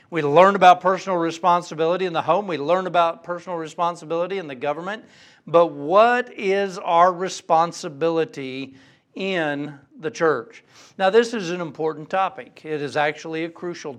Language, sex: English, male